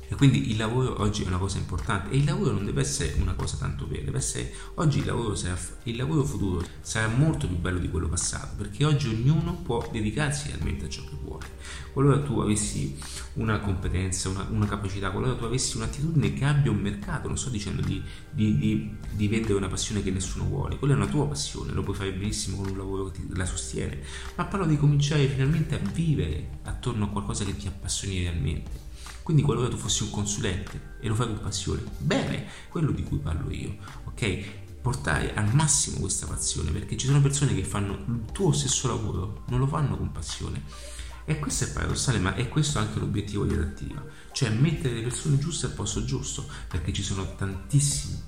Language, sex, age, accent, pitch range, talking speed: Italian, male, 30-49, native, 90-130 Hz, 205 wpm